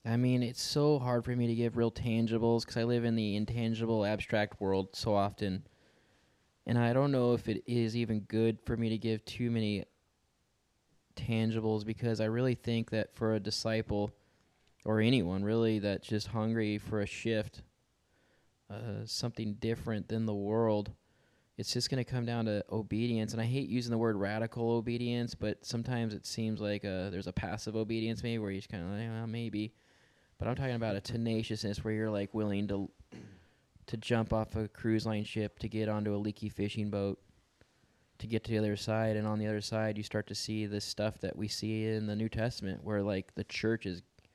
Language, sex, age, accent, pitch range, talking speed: English, male, 20-39, American, 105-115 Hz, 200 wpm